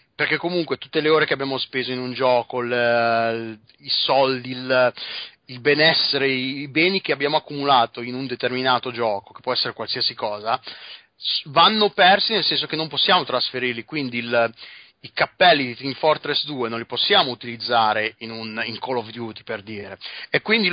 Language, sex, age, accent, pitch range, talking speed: Italian, male, 30-49, native, 120-145 Hz, 165 wpm